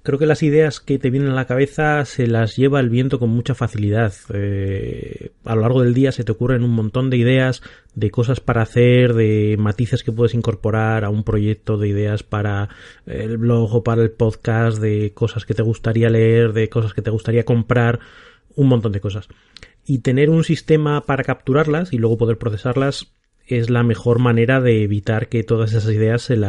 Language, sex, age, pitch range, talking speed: Spanish, male, 30-49, 110-125 Hz, 200 wpm